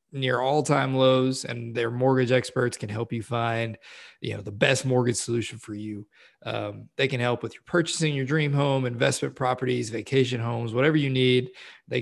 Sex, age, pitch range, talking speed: male, 20-39, 115-130 Hz, 190 wpm